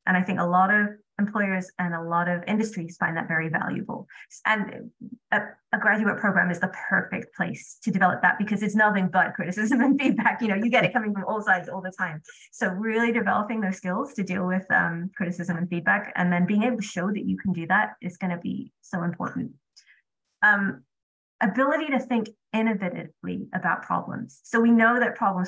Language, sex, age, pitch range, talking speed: English, female, 30-49, 175-215 Hz, 205 wpm